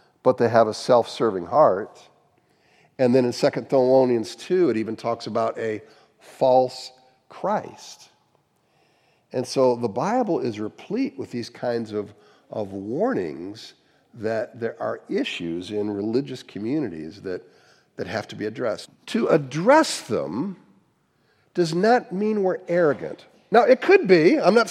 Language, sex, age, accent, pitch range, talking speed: English, male, 50-69, American, 115-160 Hz, 140 wpm